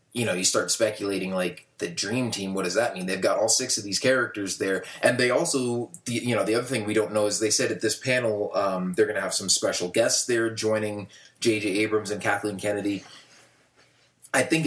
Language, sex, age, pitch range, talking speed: English, male, 30-49, 100-120 Hz, 225 wpm